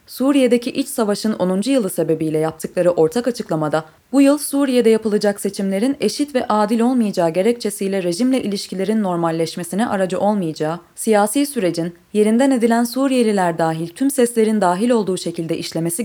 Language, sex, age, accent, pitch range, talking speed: Turkish, female, 20-39, native, 175-240 Hz, 135 wpm